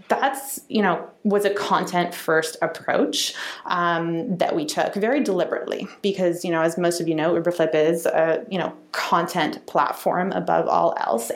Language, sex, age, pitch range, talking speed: English, female, 30-49, 170-220 Hz, 170 wpm